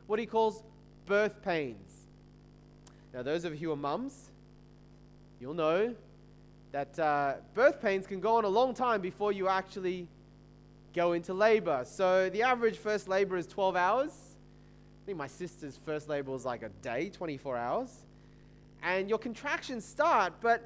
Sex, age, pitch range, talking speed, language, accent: male, 20-39, 170-225 Hz, 160 wpm, English, Australian